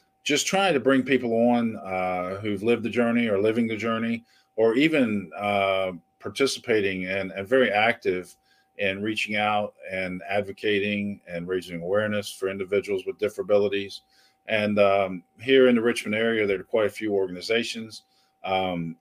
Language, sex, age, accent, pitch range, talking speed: English, male, 40-59, American, 90-110 Hz, 155 wpm